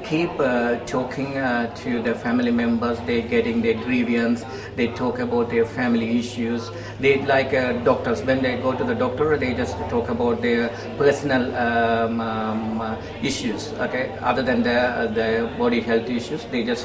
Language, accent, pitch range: Filipino, Indian, 115-150 Hz